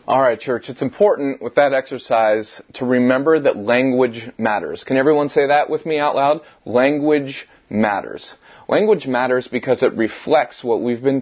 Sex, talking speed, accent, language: male, 165 wpm, American, English